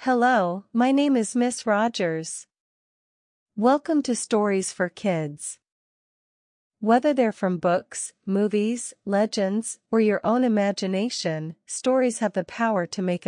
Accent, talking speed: American, 120 wpm